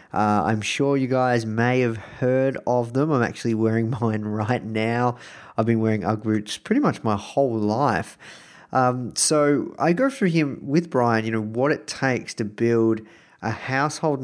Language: English